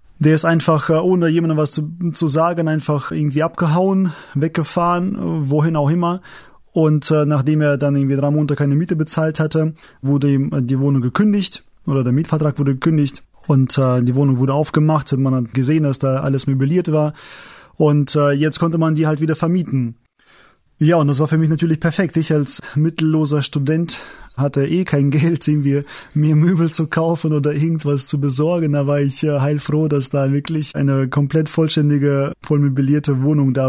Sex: male